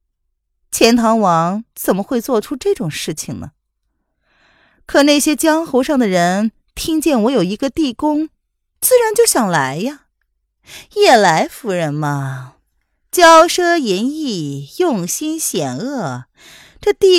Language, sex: Chinese, female